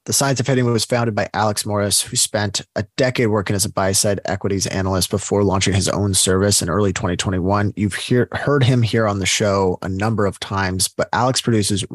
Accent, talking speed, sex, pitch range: American, 215 wpm, male, 100-115 Hz